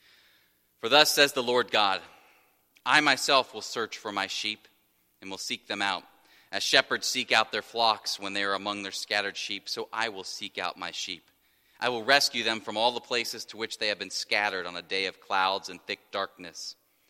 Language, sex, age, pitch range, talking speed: English, male, 30-49, 95-120 Hz, 210 wpm